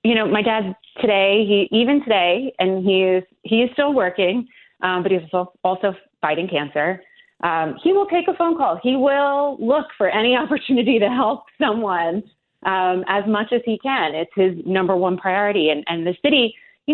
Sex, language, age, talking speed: female, English, 30-49, 190 wpm